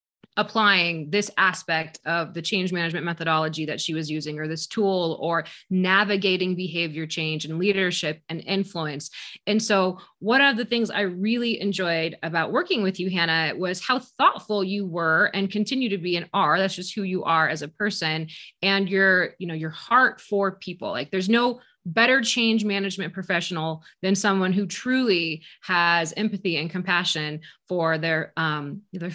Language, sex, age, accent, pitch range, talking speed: English, female, 20-39, American, 165-205 Hz, 170 wpm